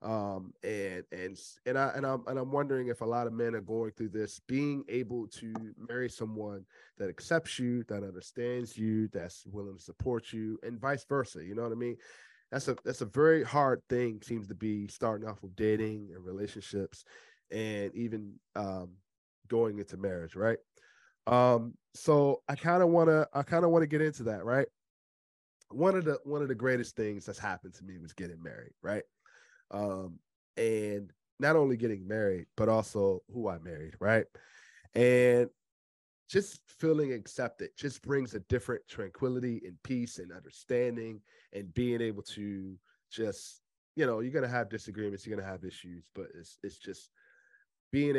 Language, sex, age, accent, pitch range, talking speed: English, male, 20-39, American, 100-125 Hz, 180 wpm